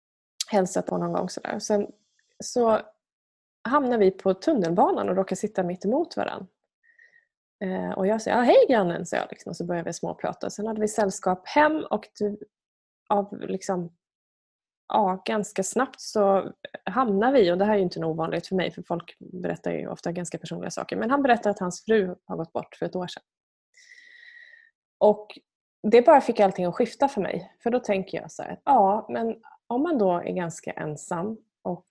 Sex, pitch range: female, 180-225 Hz